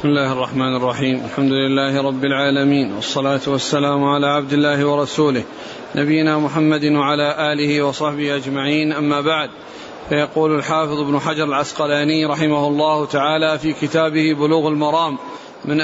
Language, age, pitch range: Arabic, 40-59, 155-185 Hz